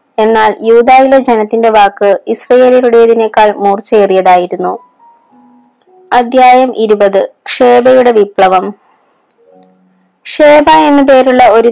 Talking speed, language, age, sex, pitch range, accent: 70 wpm, Malayalam, 20-39, female, 210-255 Hz, native